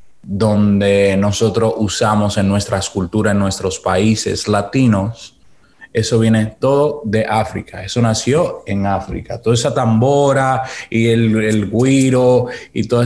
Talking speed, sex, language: 130 wpm, male, Spanish